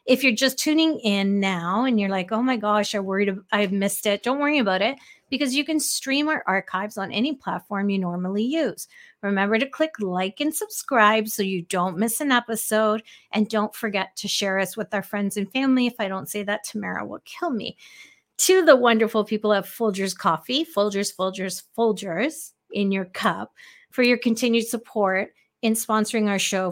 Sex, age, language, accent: female, 40-59, English, American